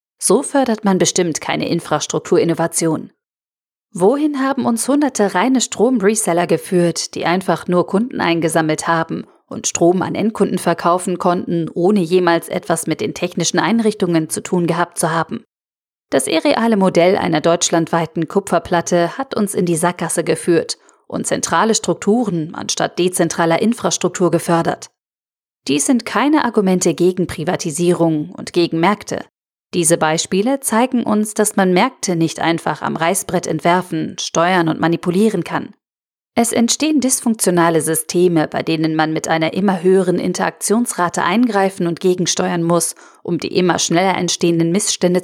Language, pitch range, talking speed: German, 170-200 Hz, 135 wpm